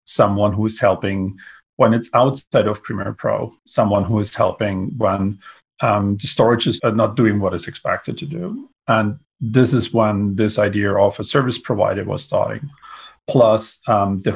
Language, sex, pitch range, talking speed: English, male, 105-125 Hz, 170 wpm